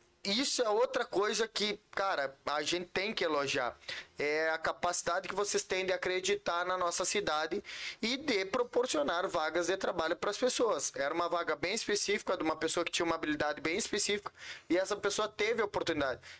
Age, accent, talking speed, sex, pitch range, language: 20-39, Brazilian, 185 wpm, male, 160-200 Hz, Portuguese